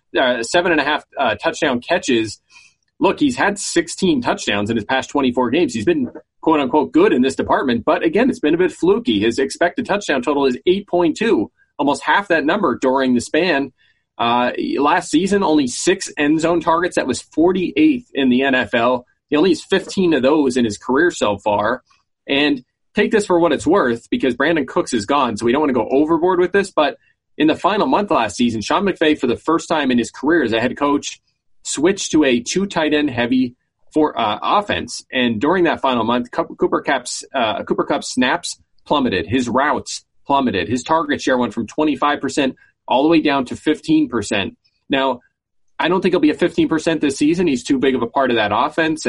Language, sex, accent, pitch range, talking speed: English, male, American, 125-185 Hz, 205 wpm